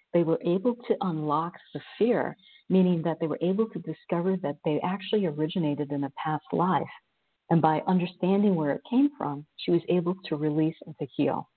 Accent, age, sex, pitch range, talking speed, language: American, 50-69, female, 150-180 Hz, 190 wpm, English